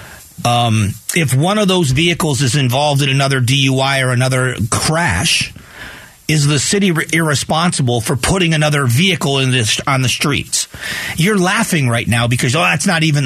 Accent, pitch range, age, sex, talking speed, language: American, 125-160 Hz, 40-59, male, 170 wpm, English